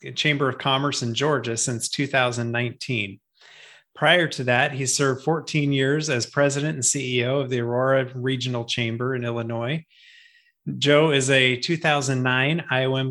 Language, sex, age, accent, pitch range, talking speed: English, male, 30-49, American, 125-145 Hz, 135 wpm